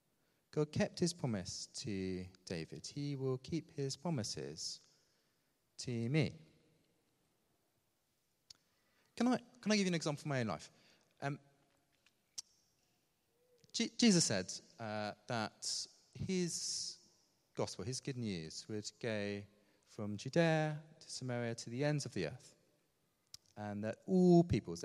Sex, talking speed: male, 125 wpm